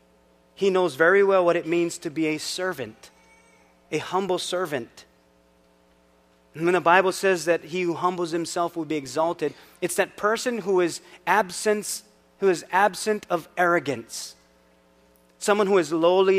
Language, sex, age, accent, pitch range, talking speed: English, male, 30-49, American, 130-185 Hz, 145 wpm